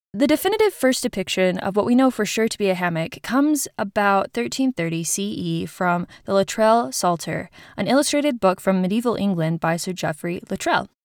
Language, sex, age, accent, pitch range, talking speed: English, female, 20-39, American, 185-265 Hz, 175 wpm